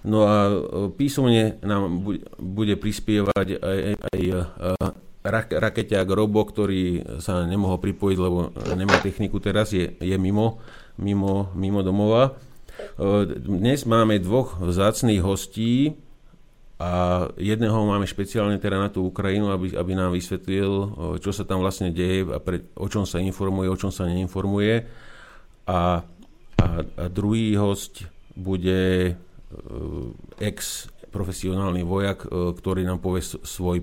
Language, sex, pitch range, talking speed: Slovak, male, 90-105 Hz, 125 wpm